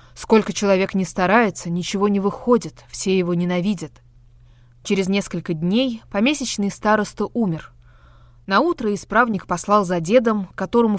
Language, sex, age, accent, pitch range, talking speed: Russian, female, 20-39, native, 170-220 Hz, 120 wpm